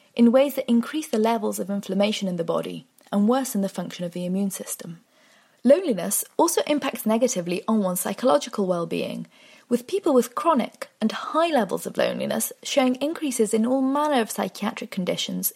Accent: British